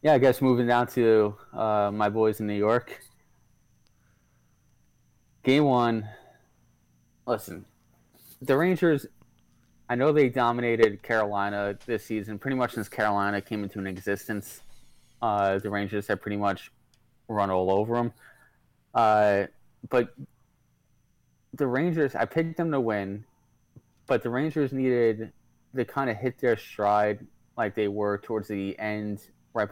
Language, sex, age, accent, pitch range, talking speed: English, male, 20-39, American, 100-125 Hz, 140 wpm